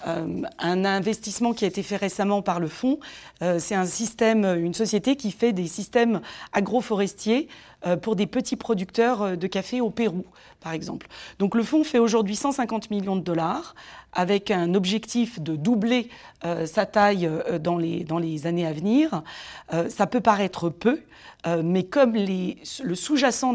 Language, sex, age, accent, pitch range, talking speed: French, female, 40-59, French, 180-235 Hz, 170 wpm